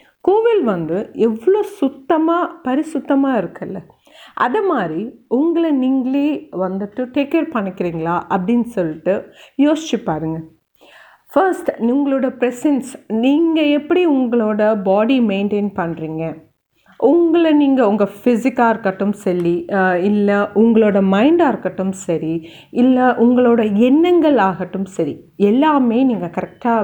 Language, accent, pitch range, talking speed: Tamil, native, 190-280 Hz, 105 wpm